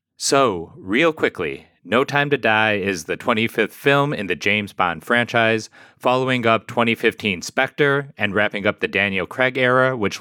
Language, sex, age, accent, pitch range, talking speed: English, male, 30-49, American, 100-120 Hz, 165 wpm